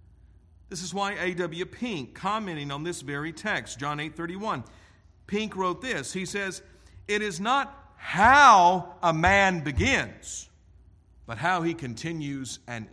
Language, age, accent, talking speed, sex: English, 50-69, American, 140 wpm, male